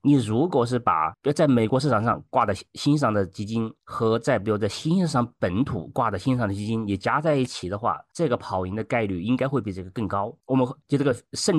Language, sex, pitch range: Chinese, male, 100-130 Hz